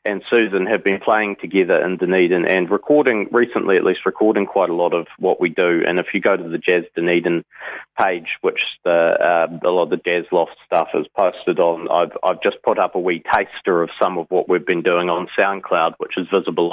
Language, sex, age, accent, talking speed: English, male, 30-49, Australian, 225 wpm